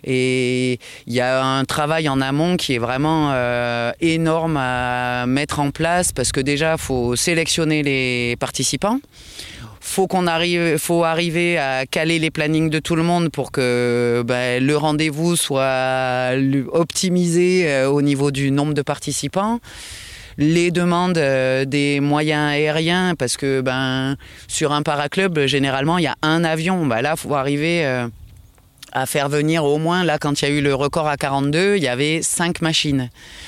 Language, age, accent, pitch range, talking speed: French, 20-39, French, 135-165 Hz, 170 wpm